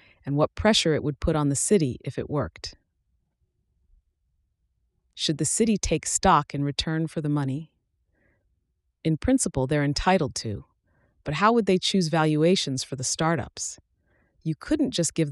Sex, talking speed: female, 155 wpm